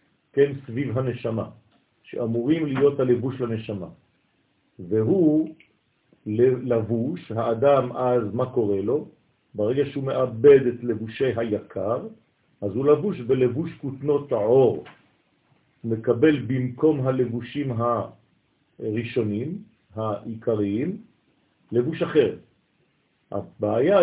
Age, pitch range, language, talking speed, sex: 50-69, 120-150 Hz, French, 80 wpm, male